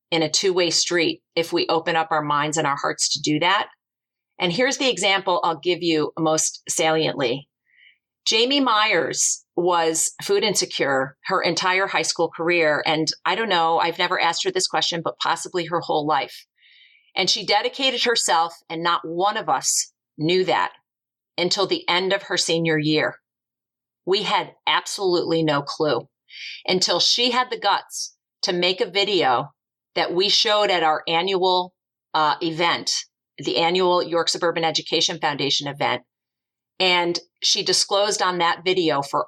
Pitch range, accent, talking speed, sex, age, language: 160-190 Hz, American, 160 wpm, female, 40-59, English